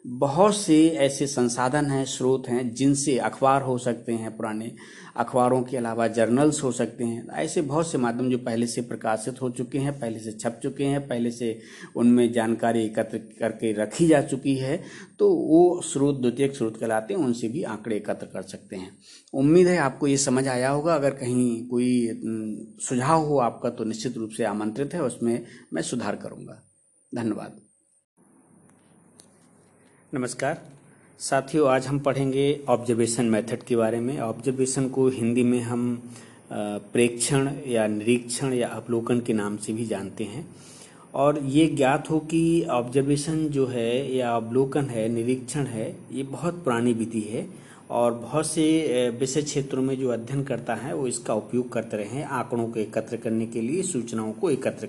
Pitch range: 115-140 Hz